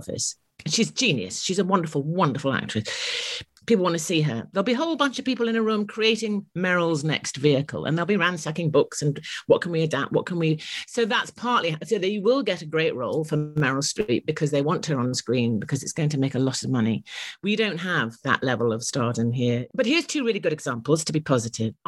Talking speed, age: 235 wpm, 50-69